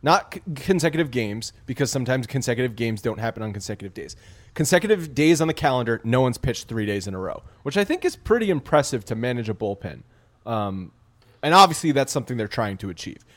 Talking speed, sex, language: 200 wpm, male, English